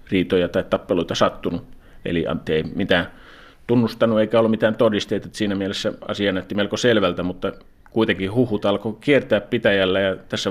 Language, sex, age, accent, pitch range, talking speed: Finnish, male, 30-49, native, 95-105 Hz, 155 wpm